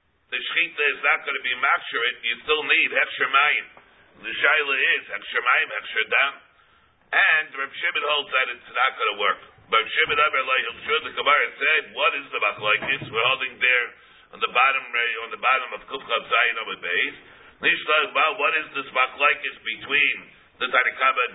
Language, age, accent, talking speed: English, 50-69, American, 175 wpm